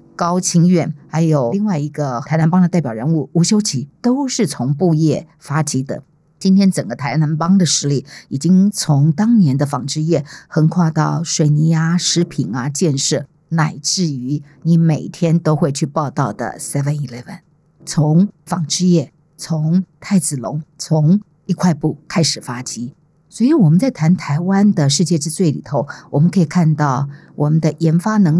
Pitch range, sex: 150-180 Hz, female